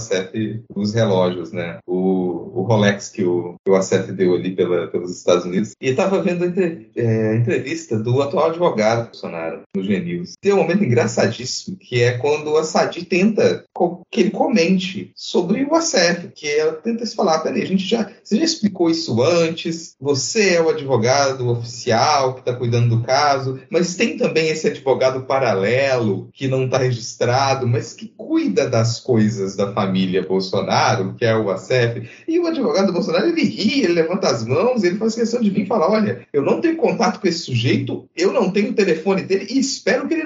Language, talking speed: Portuguese, 195 wpm